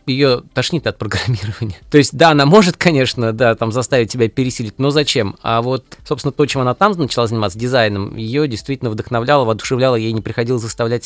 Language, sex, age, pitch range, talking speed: Russian, male, 20-39, 110-145 Hz, 190 wpm